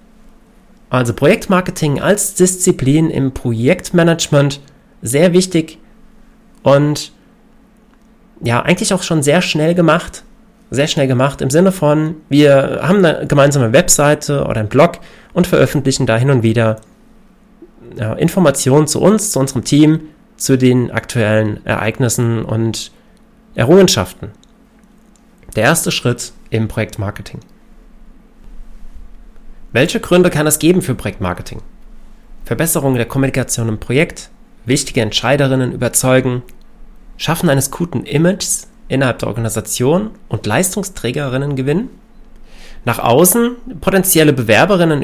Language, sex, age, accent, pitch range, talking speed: German, male, 30-49, German, 125-200 Hz, 110 wpm